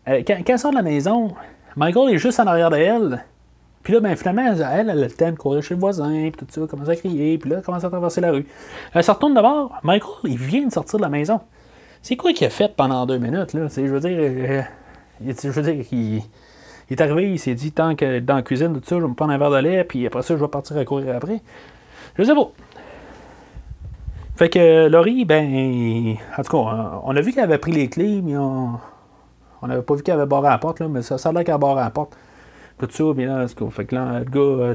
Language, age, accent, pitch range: French, 30-49, Canadian, 125-165 Hz